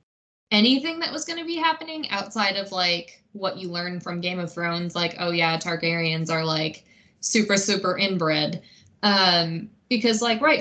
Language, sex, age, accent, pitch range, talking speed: English, female, 20-39, American, 170-215 Hz, 170 wpm